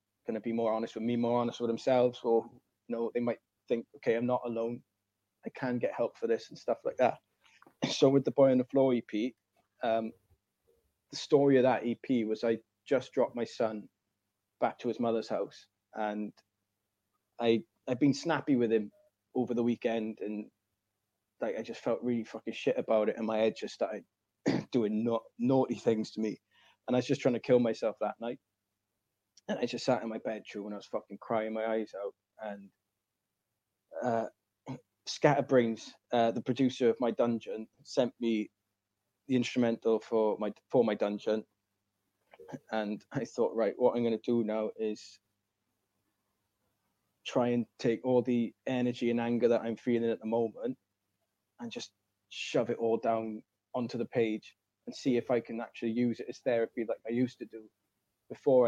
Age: 20-39